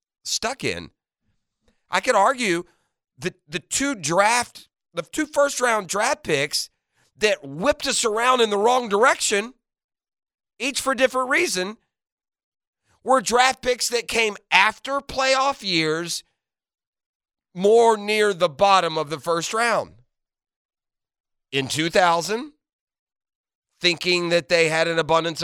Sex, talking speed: male, 120 wpm